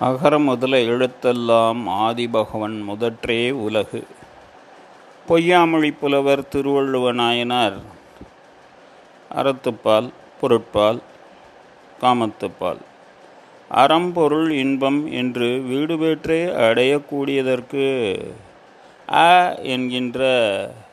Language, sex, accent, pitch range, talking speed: Tamil, male, native, 120-150 Hz, 55 wpm